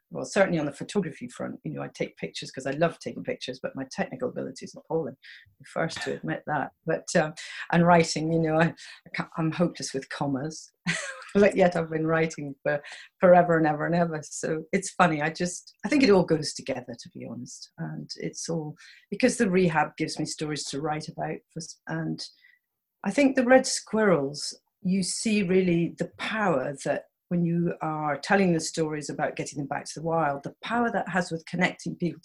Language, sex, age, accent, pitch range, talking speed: English, female, 40-59, British, 150-195 Hz, 205 wpm